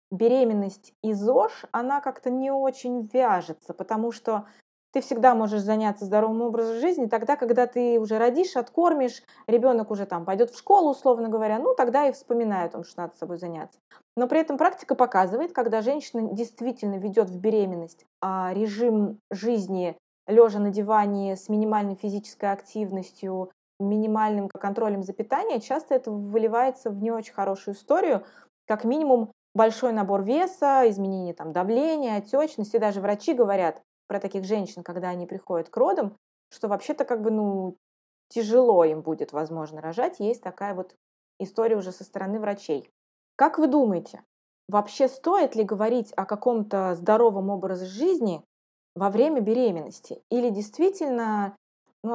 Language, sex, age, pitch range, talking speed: Russian, female, 20-39, 195-245 Hz, 145 wpm